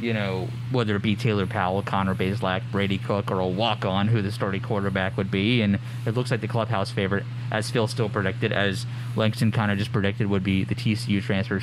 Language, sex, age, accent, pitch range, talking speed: English, male, 30-49, American, 105-120 Hz, 215 wpm